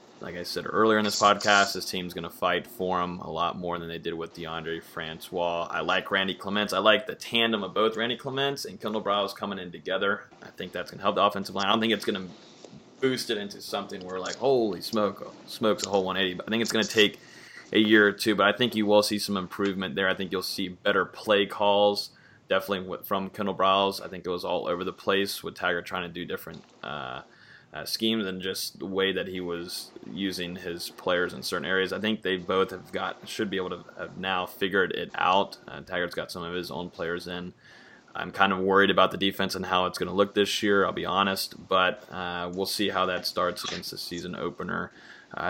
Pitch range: 90-105 Hz